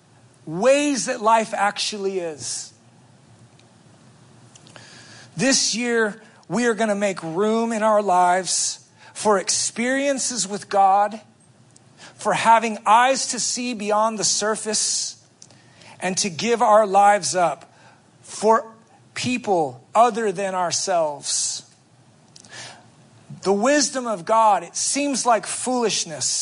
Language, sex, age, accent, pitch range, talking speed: English, male, 40-59, American, 155-240 Hz, 105 wpm